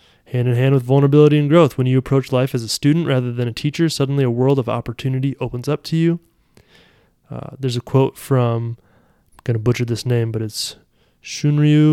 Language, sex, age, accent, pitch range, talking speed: English, male, 20-39, American, 115-135 Hz, 205 wpm